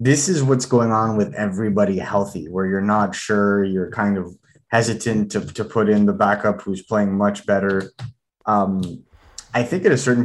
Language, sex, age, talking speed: English, male, 20-39, 185 wpm